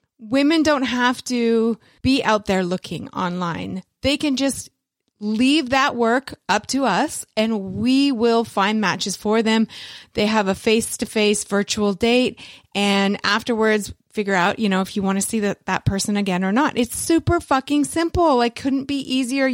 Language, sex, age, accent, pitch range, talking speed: English, female, 30-49, American, 205-260 Hz, 170 wpm